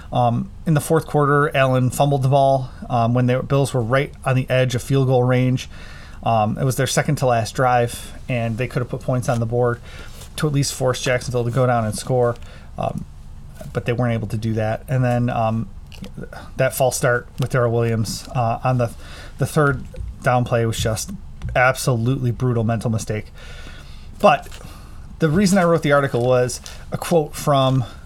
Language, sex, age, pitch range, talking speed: English, male, 30-49, 115-140 Hz, 190 wpm